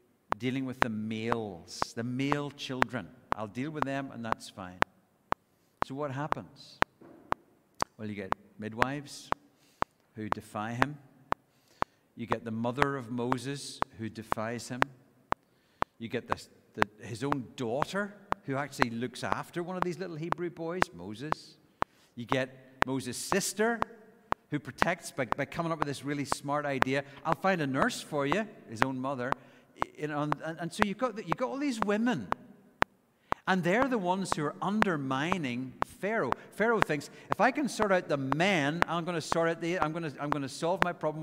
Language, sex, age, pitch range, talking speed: English, male, 50-69, 130-180 Hz, 170 wpm